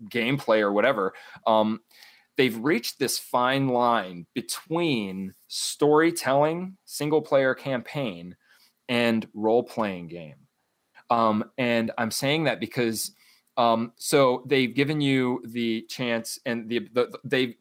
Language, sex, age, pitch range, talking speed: English, male, 20-39, 115-150 Hz, 125 wpm